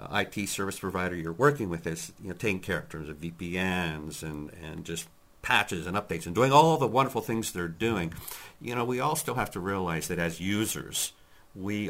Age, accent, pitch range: 50-69, American, 85-115 Hz